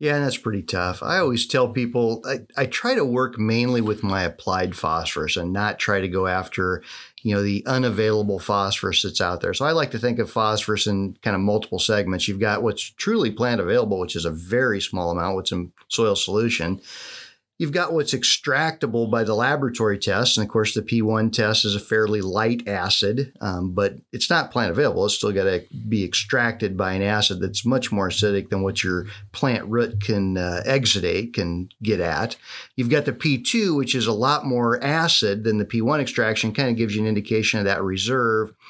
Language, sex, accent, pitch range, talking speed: English, male, American, 100-125 Hz, 205 wpm